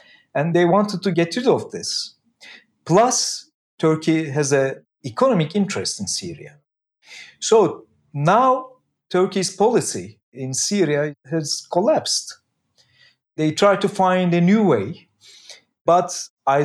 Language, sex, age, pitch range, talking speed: English, male, 50-69, 140-185 Hz, 120 wpm